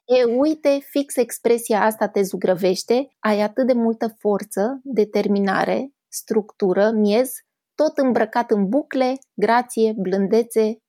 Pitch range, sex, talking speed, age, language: 195-240 Hz, female, 115 wpm, 20-39, Romanian